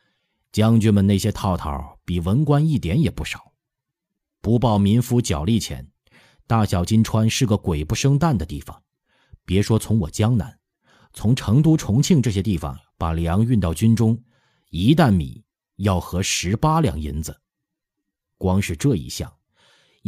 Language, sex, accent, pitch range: Chinese, male, native, 85-115 Hz